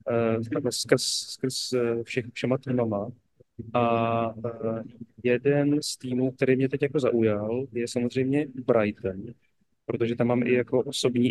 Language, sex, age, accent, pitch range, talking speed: Czech, male, 30-49, native, 115-125 Hz, 120 wpm